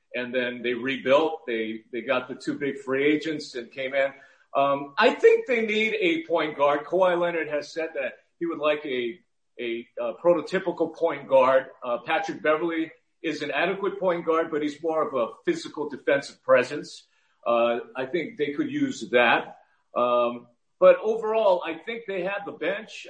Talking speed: 180 wpm